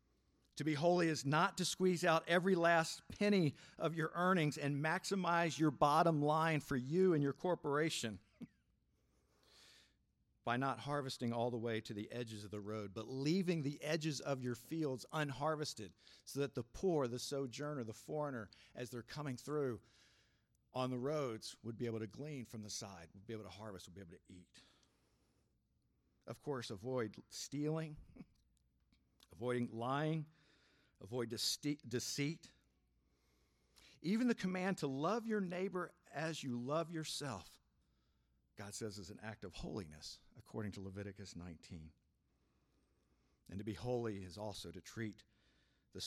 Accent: American